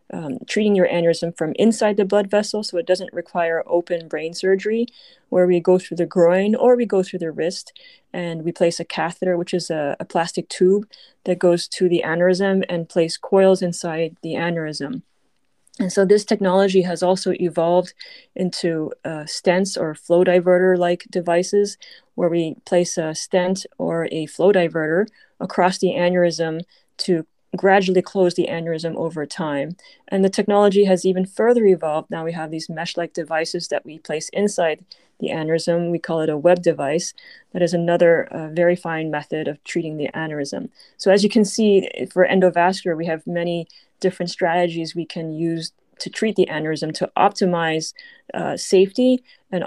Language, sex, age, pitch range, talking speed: English, female, 30-49, 165-190 Hz, 175 wpm